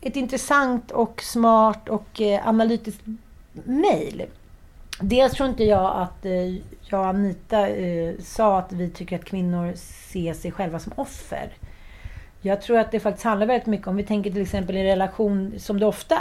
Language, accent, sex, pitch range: Swedish, native, female, 180-215 Hz